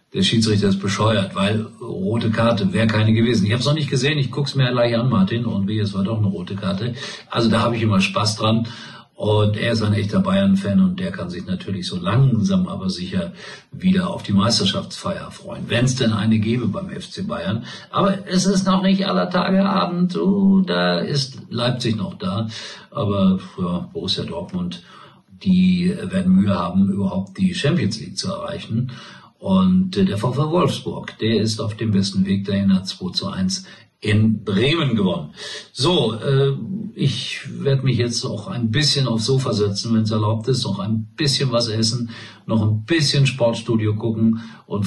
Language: German